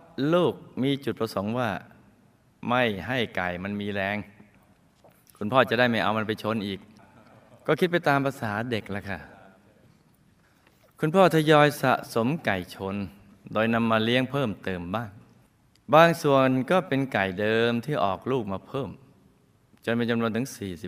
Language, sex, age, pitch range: Thai, male, 20-39, 100-130 Hz